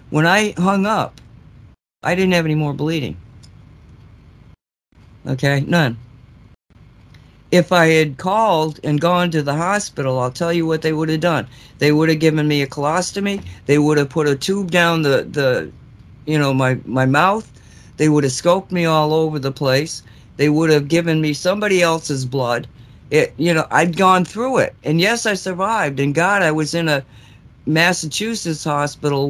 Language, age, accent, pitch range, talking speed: English, 50-69, American, 135-170 Hz, 175 wpm